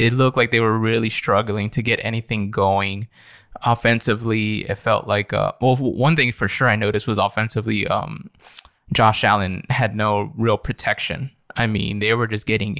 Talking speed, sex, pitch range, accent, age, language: 180 wpm, male, 105-120 Hz, American, 20-39, English